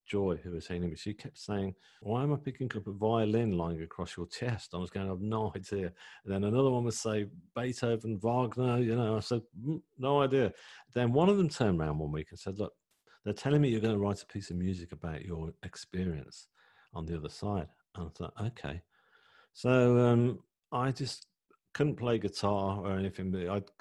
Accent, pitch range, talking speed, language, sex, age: British, 90-120 Hz, 210 wpm, English, male, 40-59